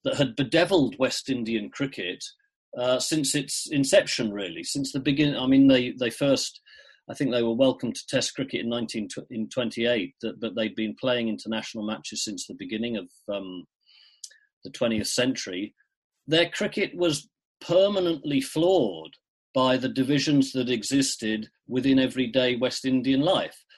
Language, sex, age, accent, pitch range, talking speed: English, male, 40-59, British, 115-150 Hz, 155 wpm